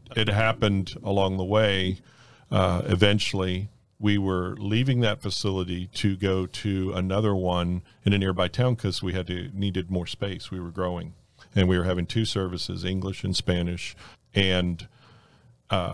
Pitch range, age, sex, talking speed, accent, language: 90-105 Hz, 40-59, male, 160 wpm, American, English